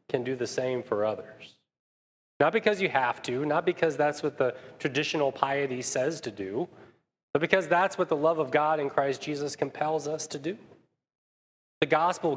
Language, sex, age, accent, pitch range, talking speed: English, male, 30-49, American, 125-155 Hz, 185 wpm